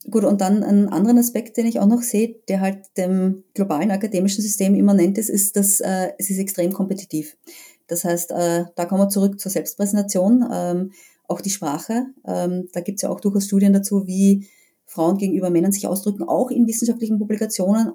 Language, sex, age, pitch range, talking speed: German, female, 30-49, 185-215 Hz, 195 wpm